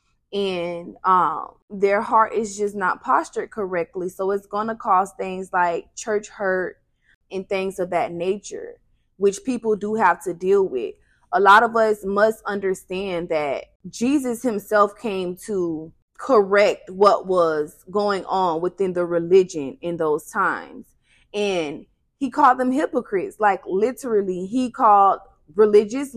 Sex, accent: female, American